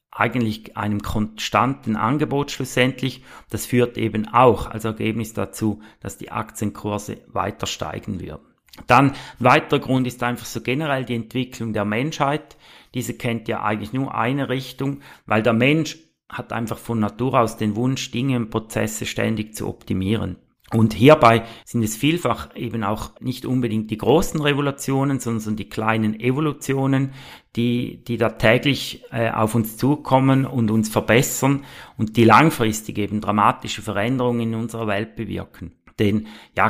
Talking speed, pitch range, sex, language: 150 wpm, 110-125 Hz, male, German